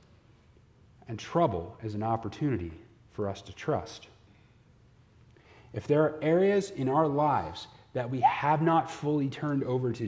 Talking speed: 145 wpm